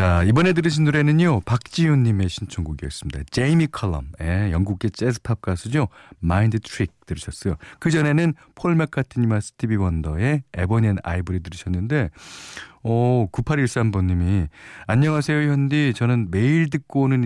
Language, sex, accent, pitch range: Korean, male, native, 90-135 Hz